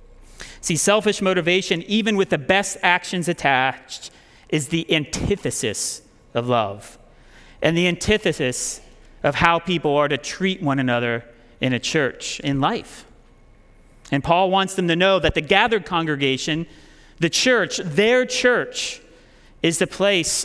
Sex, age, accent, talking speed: male, 40-59, American, 140 wpm